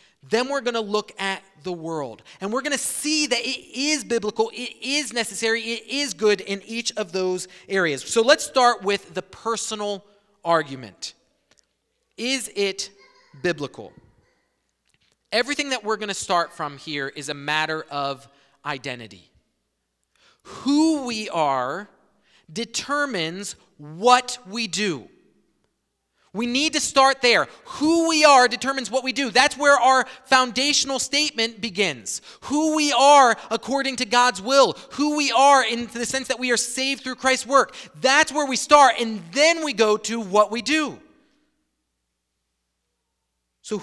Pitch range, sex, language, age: 170-260 Hz, male, English, 30-49